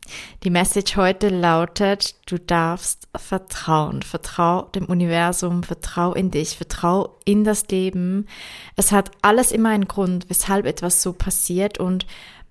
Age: 20-39